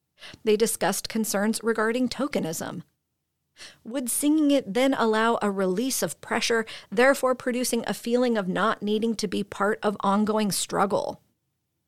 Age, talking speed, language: 40-59, 135 wpm, English